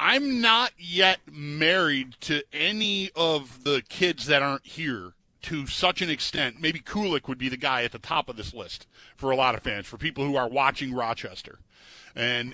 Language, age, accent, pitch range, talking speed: English, 40-59, American, 125-175 Hz, 190 wpm